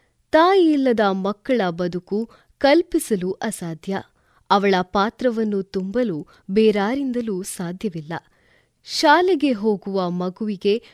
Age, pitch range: 20-39, 195-275 Hz